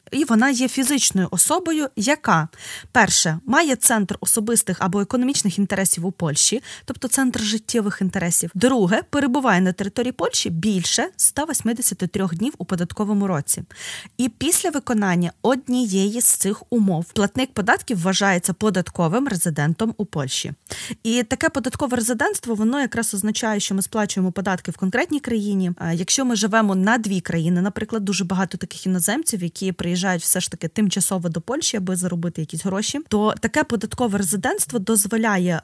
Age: 20-39